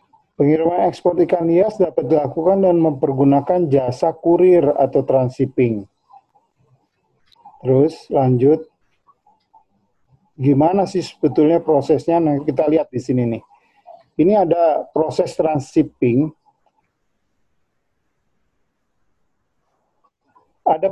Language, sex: Indonesian, male